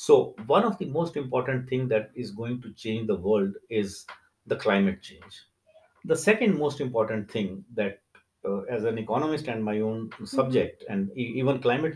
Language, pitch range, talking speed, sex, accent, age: English, 110-155 Hz, 175 wpm, male, Indian, 60-79